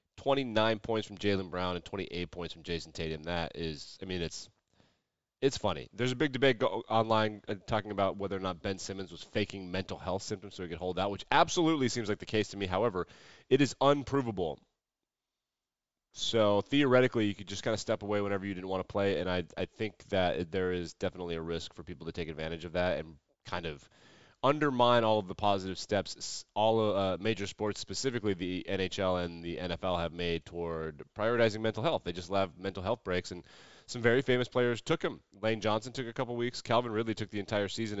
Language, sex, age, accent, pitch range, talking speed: English, male, 30-49, American, 90-110 Hz, 215 wpm